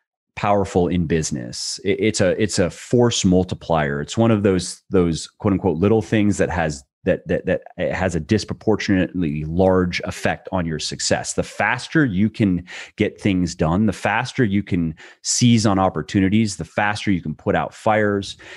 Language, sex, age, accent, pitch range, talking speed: English, male, 30-49, American, 85-105 Hz, 170 wpm